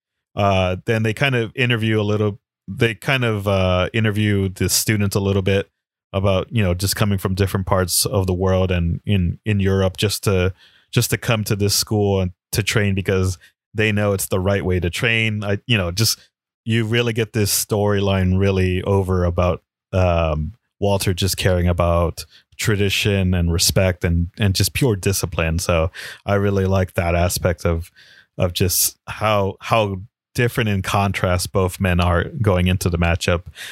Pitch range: 95-105 Hz